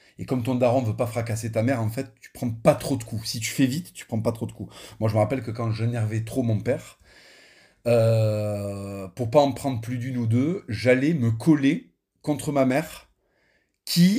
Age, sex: 40-59, male